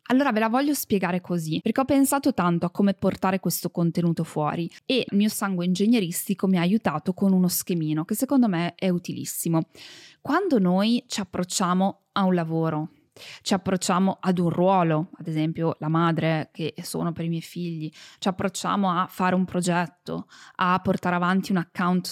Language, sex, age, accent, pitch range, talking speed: Italian, female, 20-39, native, 170-220 Hz, 175 wpm